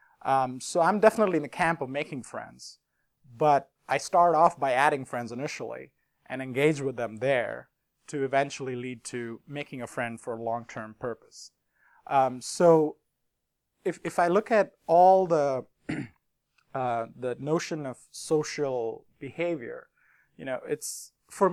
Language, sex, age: English, male, 30-49